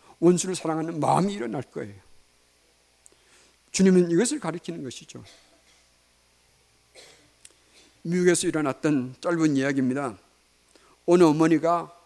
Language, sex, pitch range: Korean, male, 115-165 Hz